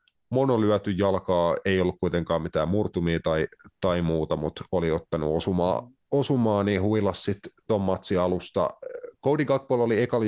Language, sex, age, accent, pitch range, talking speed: Finnish, male, 30-49, native, 80-95 Hz, 145 wpm